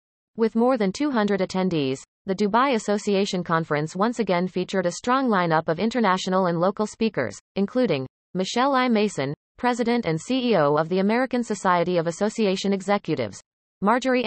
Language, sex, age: English, female, 30-49